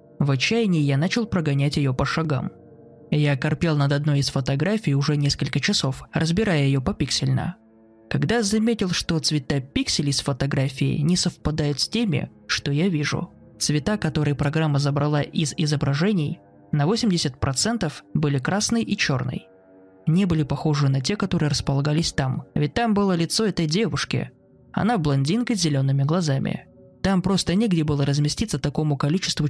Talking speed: 145 wpm